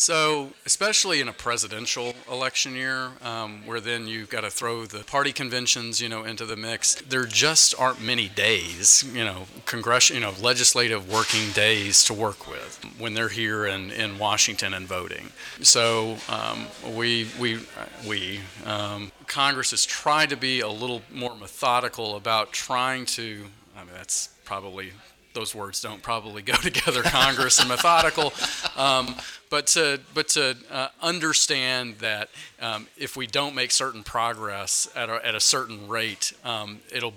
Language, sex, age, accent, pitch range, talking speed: English, male, 40-59, American, 105-125 Hz, 160 wpm